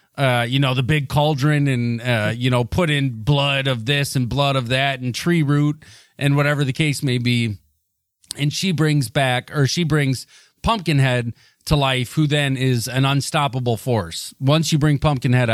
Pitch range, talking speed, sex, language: 120-155 Hz, 185 wpm, male, English